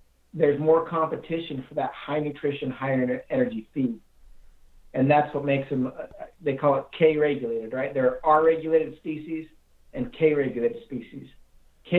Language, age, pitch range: English, 50-69, 115-145 Hz